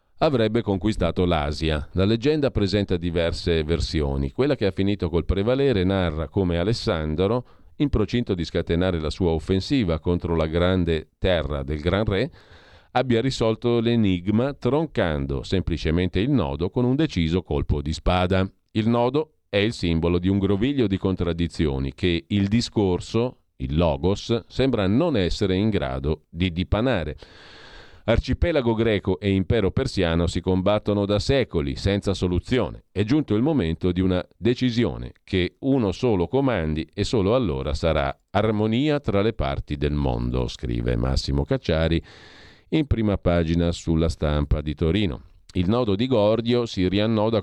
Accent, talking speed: native, 145 wpm